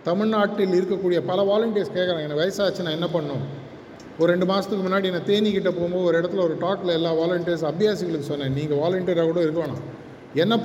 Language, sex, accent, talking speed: Tamil, male, native, 165 wpm